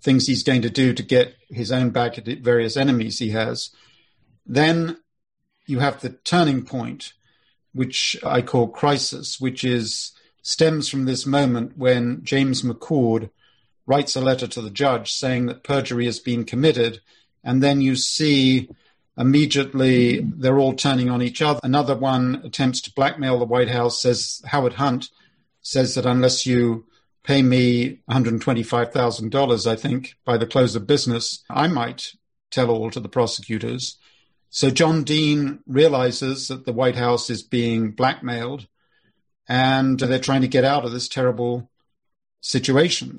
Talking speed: 155 wpm